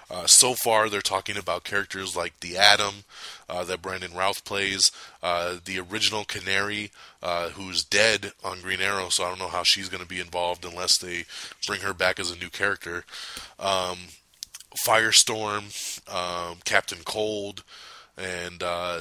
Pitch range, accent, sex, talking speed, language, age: 90-105 Hz, American, male, 160 wpm, English, 20-39